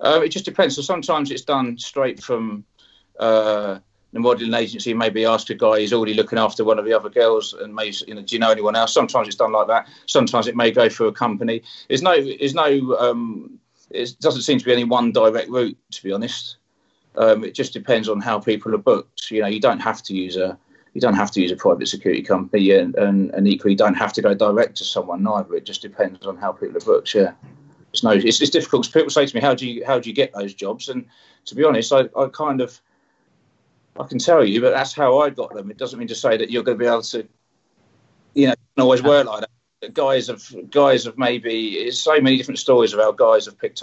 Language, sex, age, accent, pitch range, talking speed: English, male, 30-49, British, 110-145 Hz, 250 wpm